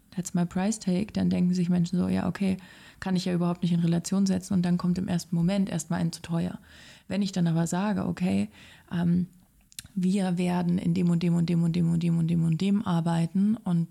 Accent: German